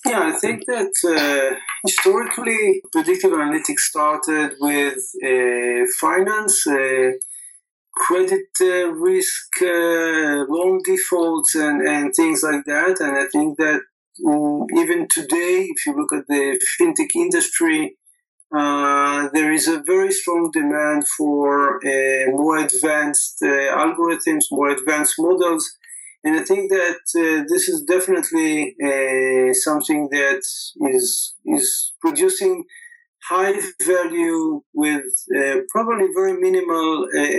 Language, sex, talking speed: English, male, 120 wpm